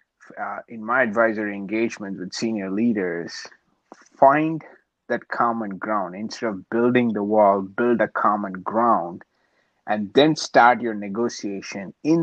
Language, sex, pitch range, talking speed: English, male, 105-130 Hz, 130 wpm